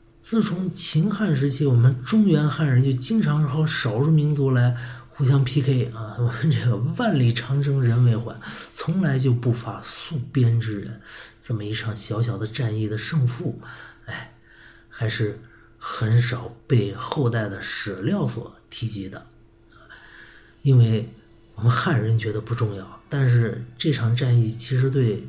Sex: male